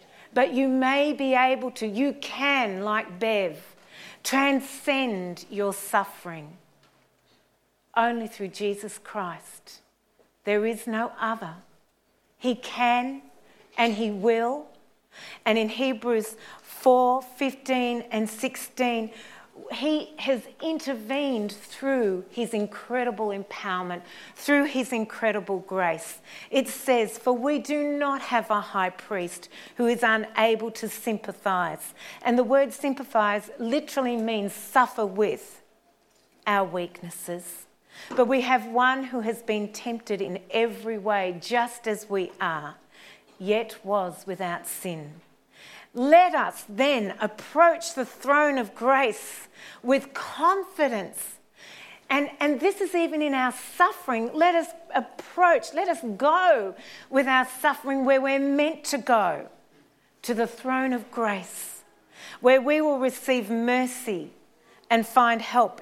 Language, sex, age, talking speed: English, female, 40-59, 120 wpm